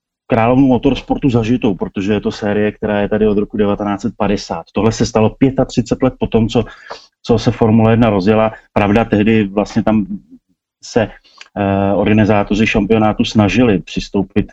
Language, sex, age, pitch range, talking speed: Slovak, male, 30-49, 100-115 Hz, 155 wpm